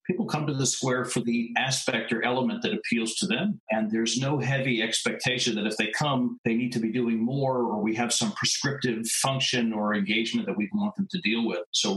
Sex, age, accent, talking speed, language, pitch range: male, 50-69, American, 225 wpm, English, 110-185 Hz